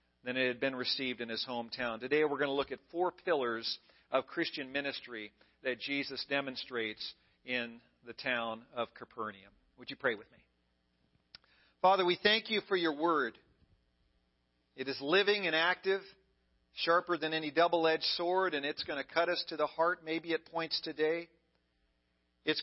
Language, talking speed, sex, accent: English, 165 wpm, male, American